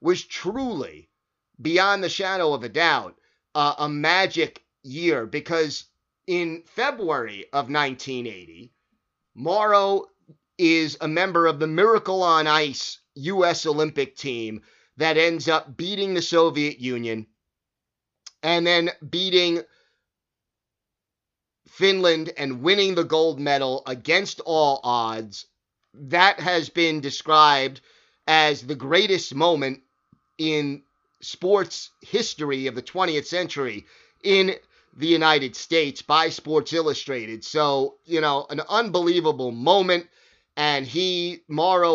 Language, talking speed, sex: English, 115 wpm, male